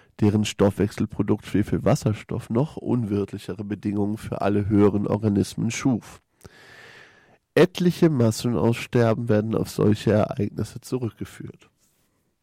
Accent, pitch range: German, 105-120 Hz